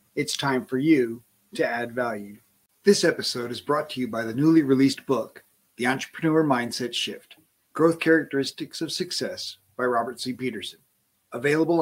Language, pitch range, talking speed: English, 120-165 Hz, 155 wpm